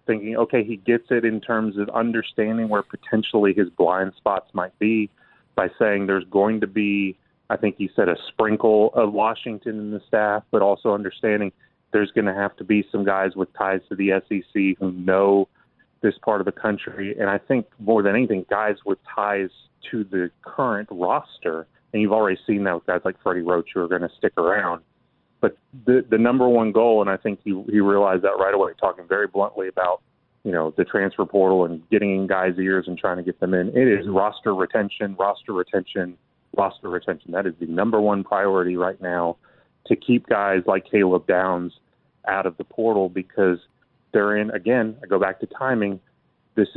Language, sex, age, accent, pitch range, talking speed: English, male, 30-49, American, 95-110 Hz, 200 wpm